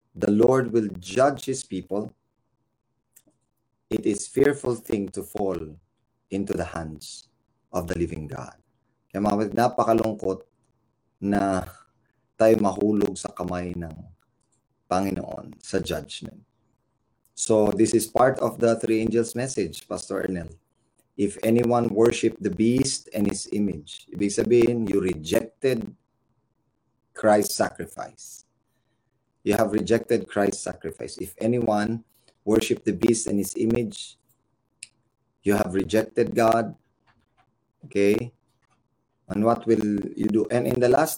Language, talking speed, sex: Filipino, 120 wpm, male